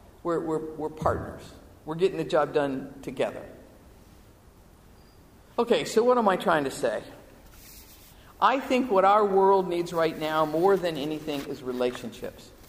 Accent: American